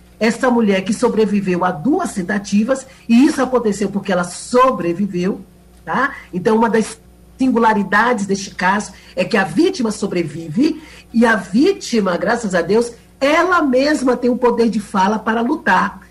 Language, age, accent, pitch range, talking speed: Portuguese, 50-69, Brazilian, 205-255 Hz, 150 wpm